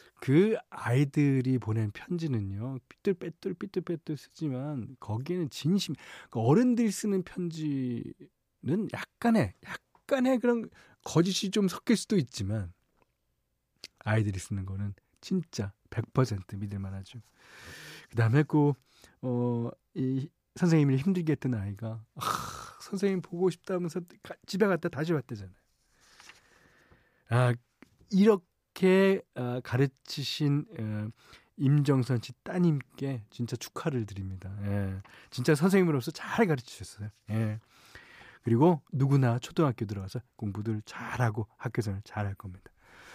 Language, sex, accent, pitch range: Korean, male, native, 115-175 Hz